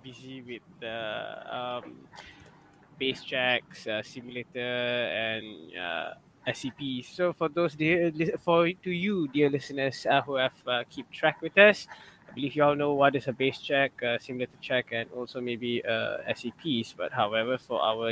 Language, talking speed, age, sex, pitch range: English, 170 wpm, 20-39, male, 125-165 Hz